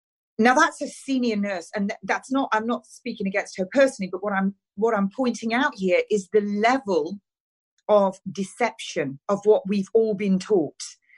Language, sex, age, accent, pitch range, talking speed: English, female, 40-59, British, 175-230 Hz, 175 wpm